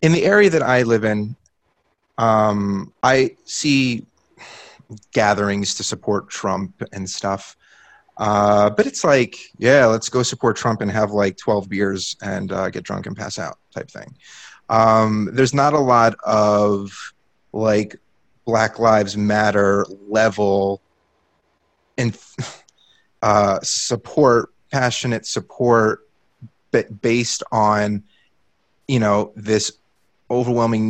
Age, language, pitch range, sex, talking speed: 30-49, English, 100-120 Hz, male, 120 wpm